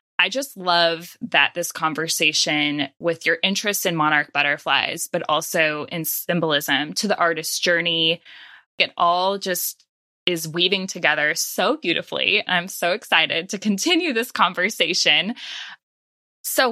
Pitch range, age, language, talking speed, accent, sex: 165-210 Hz, 10-29, English, 130 wpm, American, female